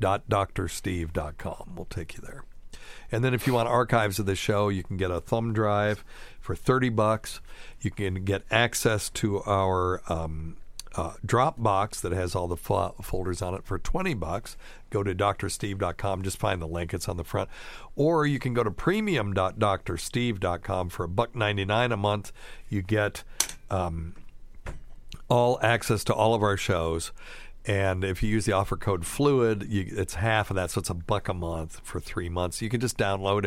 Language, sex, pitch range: English, male, 95-120 Hz